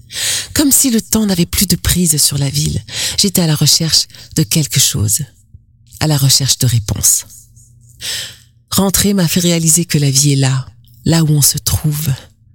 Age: 40-59